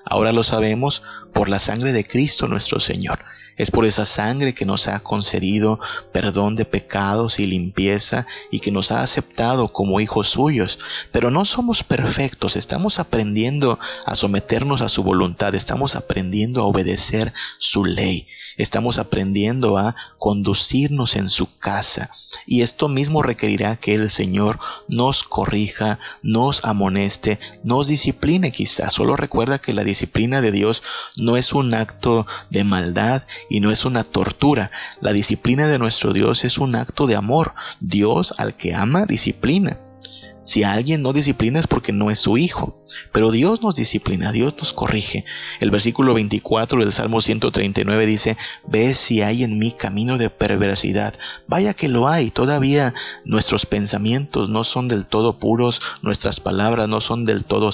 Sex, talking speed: male, 160 wpm